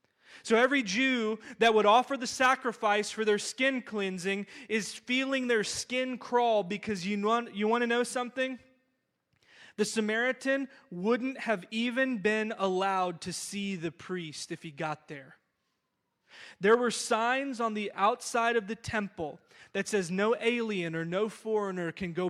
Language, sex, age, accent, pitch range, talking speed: English, male, 20-39, American, 200-255 Hz, 155 wpm